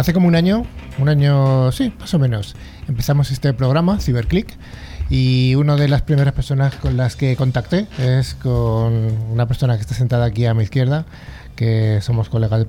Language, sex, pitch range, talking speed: Spanish, male, 115-140 Hz, 185 wpm